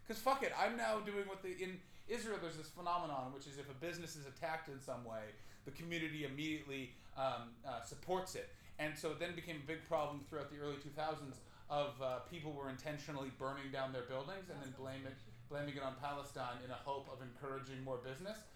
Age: 30-49